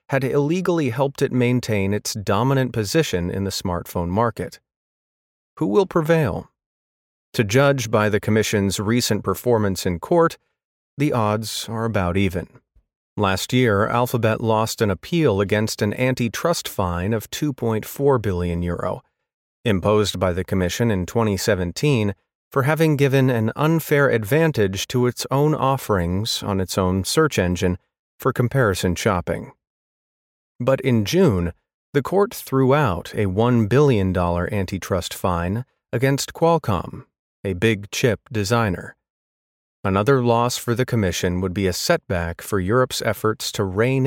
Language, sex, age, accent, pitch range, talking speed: English, male, 40-59, American, 95-135 Hz, 135 wpm